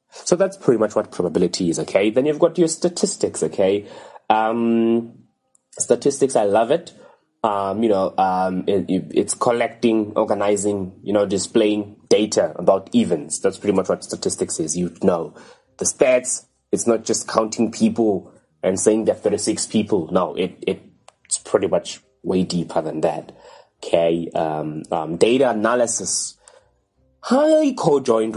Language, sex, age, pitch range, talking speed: English, male, 20-39, 95-120 Hz, 145 wpm